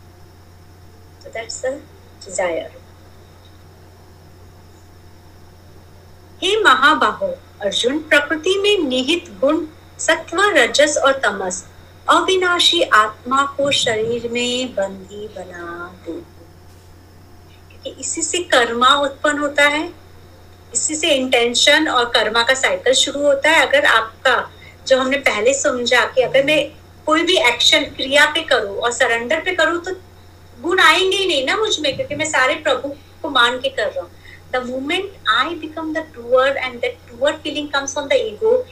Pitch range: 235-345 Hz